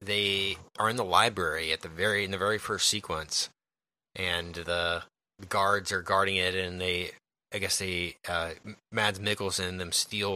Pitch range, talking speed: 85-100 Hz, 170 wpm